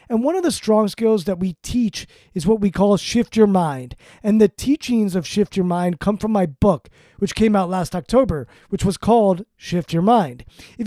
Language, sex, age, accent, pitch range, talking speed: English, male, 20-39, American, 165-220 Hz, 215 wpm